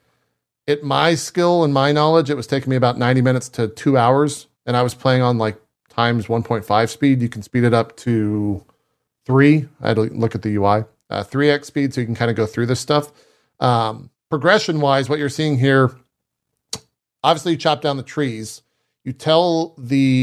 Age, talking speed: 40-59, 195 wpm